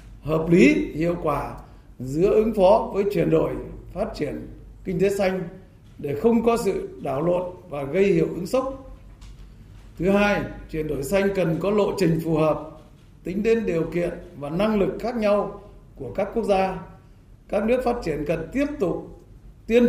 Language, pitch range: Vietnamese, 150-205 Hz